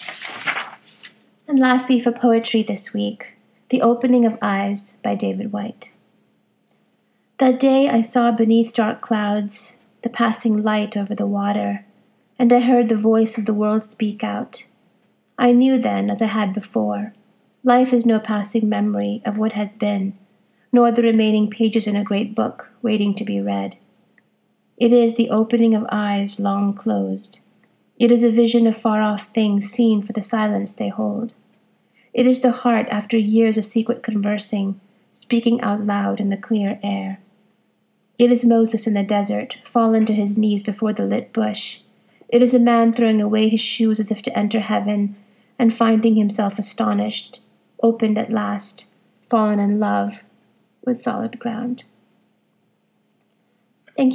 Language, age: English, 30-49